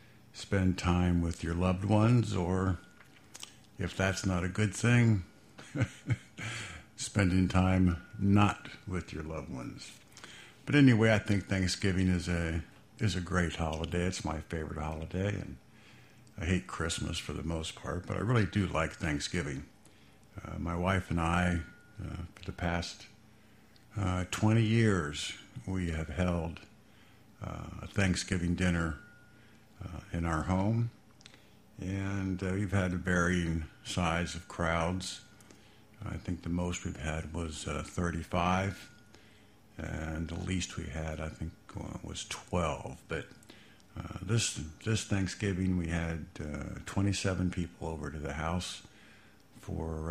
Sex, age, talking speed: male, 60-79, 140 wpm